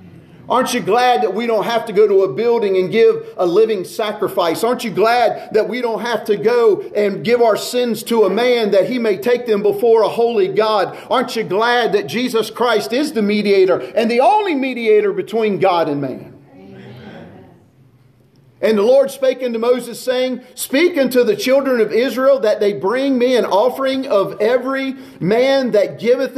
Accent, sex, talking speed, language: American, male, 190 wpm, English